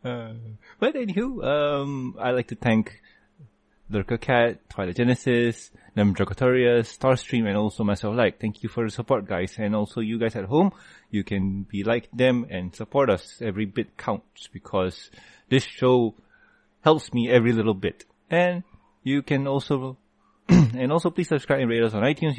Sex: male